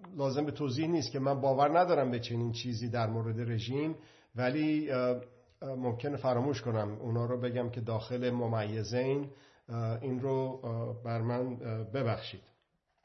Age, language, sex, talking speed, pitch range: 50-69, Persian, male, 135 wpm, 120-140 Hz